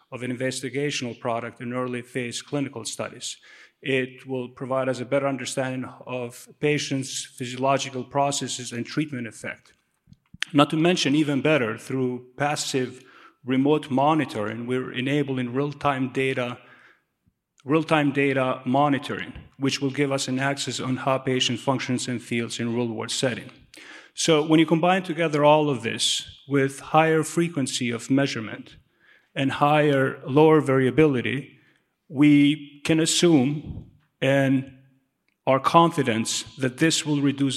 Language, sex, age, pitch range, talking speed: English, male, 40-59, 125-145 Hz, 135 wpm